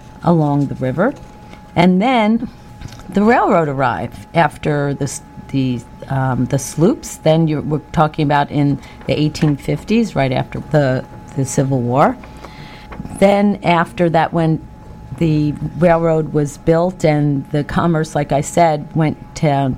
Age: 50-69